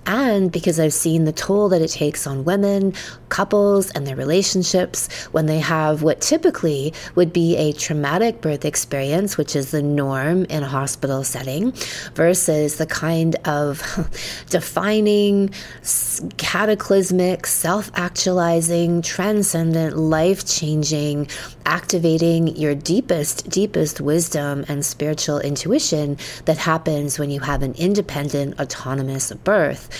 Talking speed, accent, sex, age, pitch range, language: 120 wpm, American, female, 20-39, 145-175 Hz, English